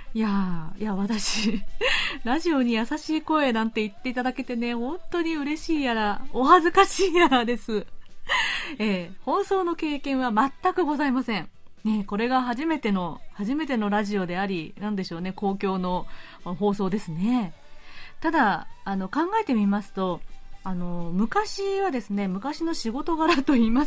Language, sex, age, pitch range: Japanese, female, 30-49, 195-290 Hz